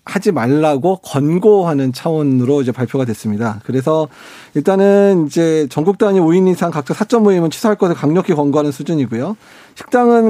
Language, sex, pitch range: Korean, male, 135-190 Hz